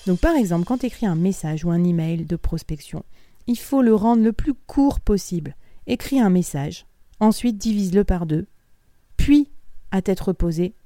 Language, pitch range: French, 170-225 Hz